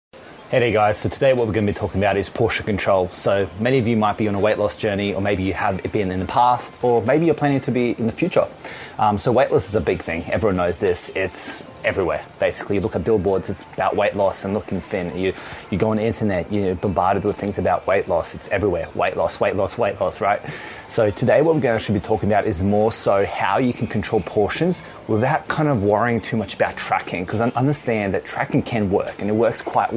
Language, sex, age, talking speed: English, male, 20-39, 250 wpm